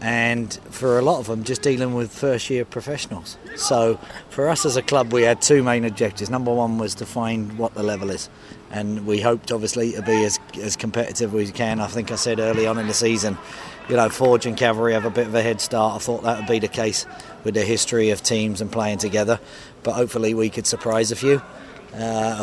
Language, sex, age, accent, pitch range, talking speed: English, male, 30-49, British, 110-120 Hz, 235 wpm